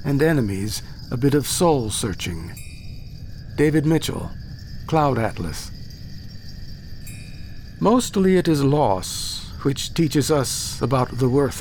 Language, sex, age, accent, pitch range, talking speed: English, male, 60-79, American, 110-160 Hz, 105 wpm